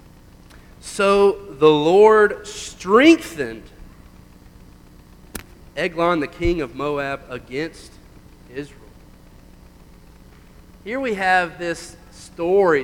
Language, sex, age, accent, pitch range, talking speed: English, male, 40-59, American, 120-165 Hz, 75 wpm